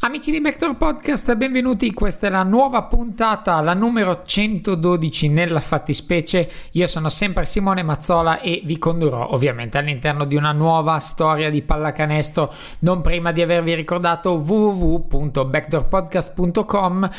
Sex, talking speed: male, 130 wpm